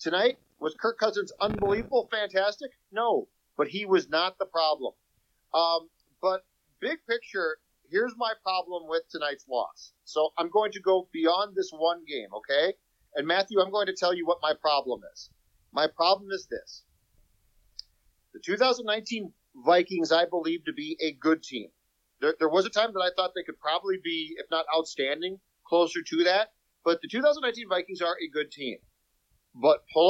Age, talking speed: 40-59, 170 wpm